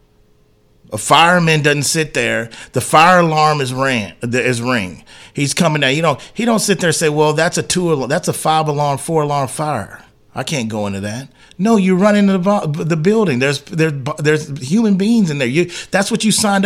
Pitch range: 130-200 Hz